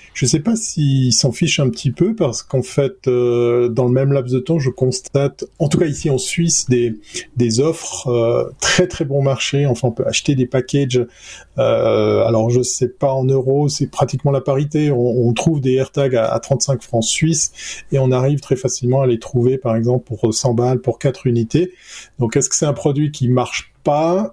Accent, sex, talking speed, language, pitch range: French, male, 220 wpm, French, 120-145 Hz